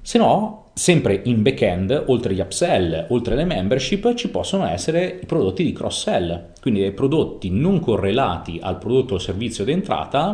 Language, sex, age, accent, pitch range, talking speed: Italian, male, 30-49, native, 85-105 Hz, 160 wpm